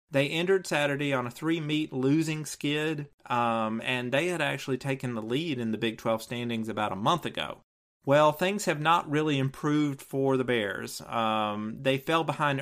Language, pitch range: English, 125-165 Hz